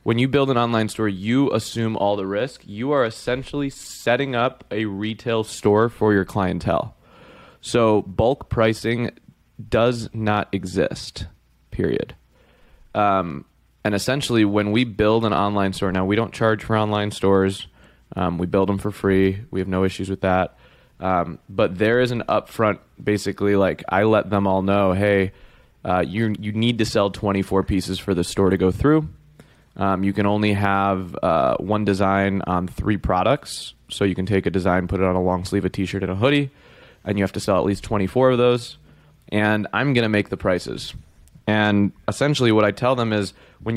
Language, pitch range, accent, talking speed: English, 95-115 Hz, American, 190 wpm